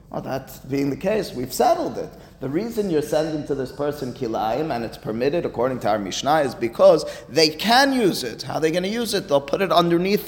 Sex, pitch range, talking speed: male, 115-155 Hz, 235 wpm